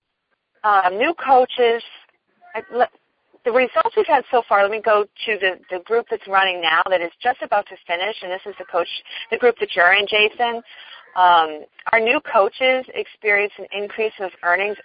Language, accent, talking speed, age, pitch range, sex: English, American, 180 wpm, 40-59, 185-235 Hz, female